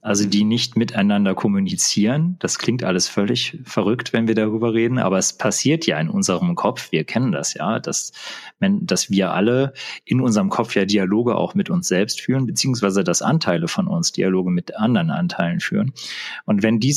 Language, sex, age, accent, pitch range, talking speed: German, male, 40-59, German, 105-165 Hz, 185 wpm